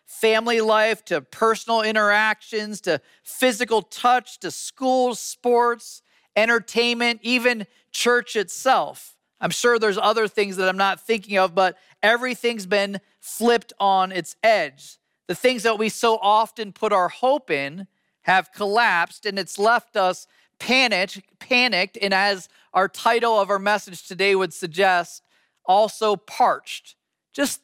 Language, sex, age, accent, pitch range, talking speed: English, male, 40-59, American, 195-235 Hz, 135 wpm